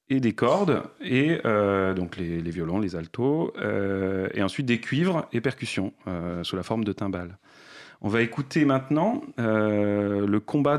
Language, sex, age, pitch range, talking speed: French, male, 30-49, 95-135 Hz, 170 wpm